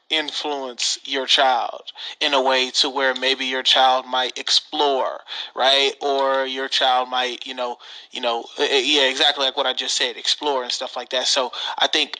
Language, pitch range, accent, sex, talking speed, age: English, 130-145 Hz, American, male, 180 wpm, 30-49